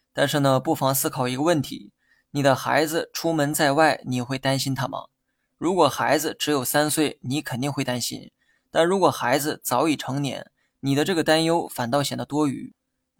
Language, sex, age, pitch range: Chinese, male, 20-39, 130-155 Hz